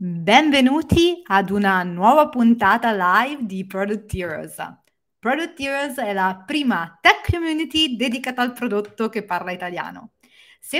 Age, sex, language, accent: 30-49, female, Italian, native